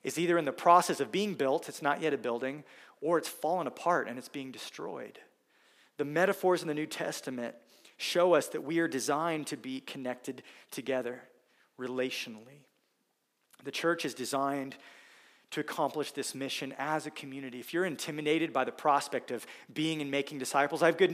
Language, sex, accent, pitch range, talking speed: English, male, American, 145-180 Hz, 180 wpm